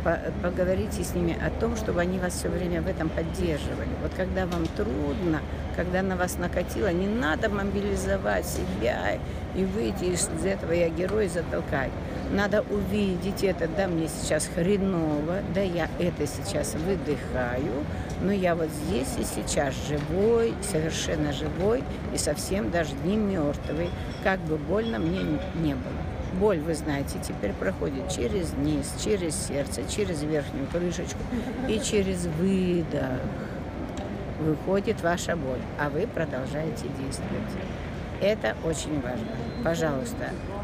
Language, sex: Russian, female